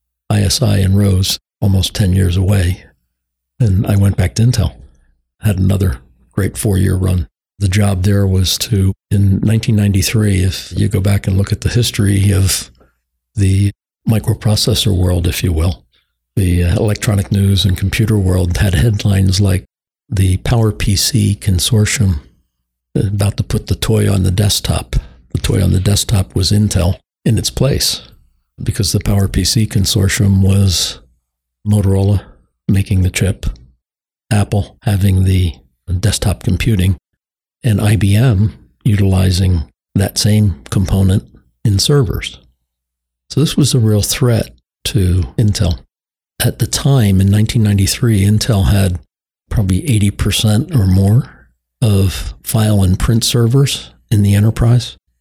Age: 60-79